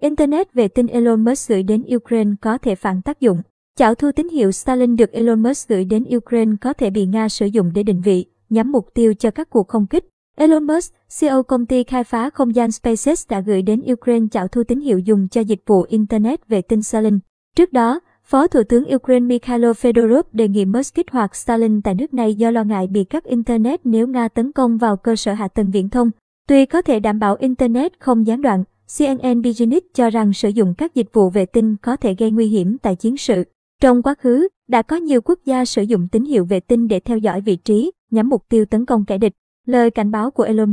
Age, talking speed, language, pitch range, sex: 20-39, 235 wpm, Vietnamese, 215-255 Hz, male